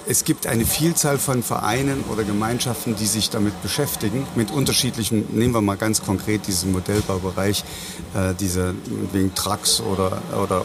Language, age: German, 50-69